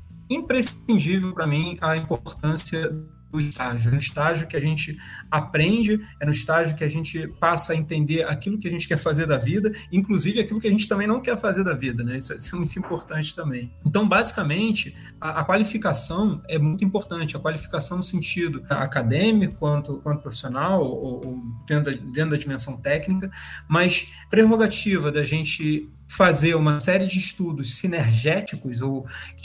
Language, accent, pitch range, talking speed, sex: Portuguese, Brazilian, 145-180 Hz, 175 wpm, male